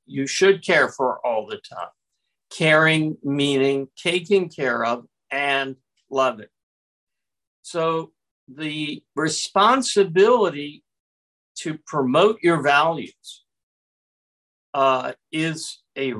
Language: English